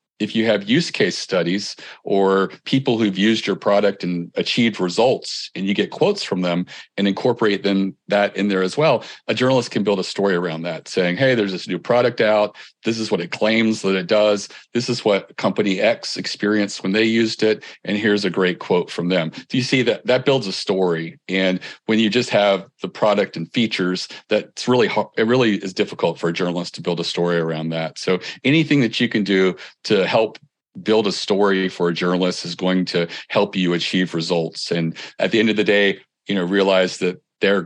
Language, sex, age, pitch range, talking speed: English, male, 40-59, 90-105 Hz, 215 wpm